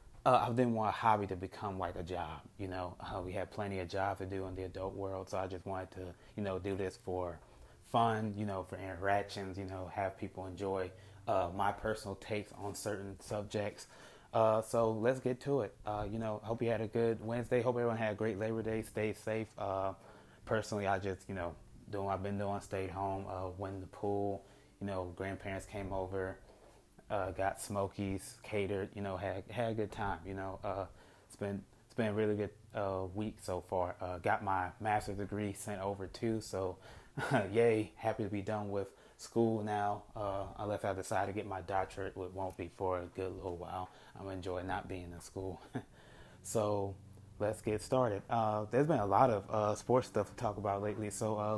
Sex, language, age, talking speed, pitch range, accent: male, English, 20-39, 215 wpm, 95-110 Hz, American